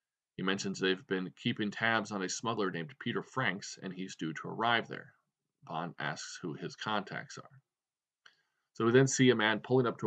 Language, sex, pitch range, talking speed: English, male, 95-130 Hz, 195 wpm